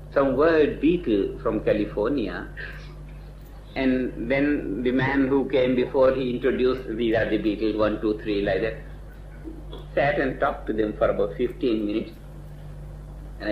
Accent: Indian